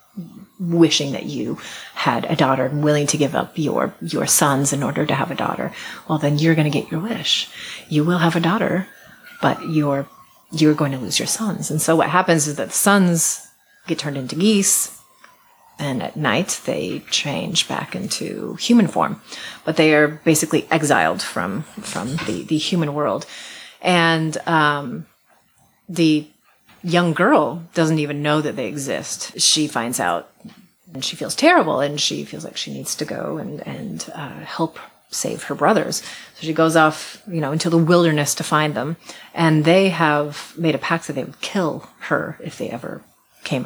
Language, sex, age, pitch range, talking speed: English, female, 30-49, 150-195 Hz, 185 wpm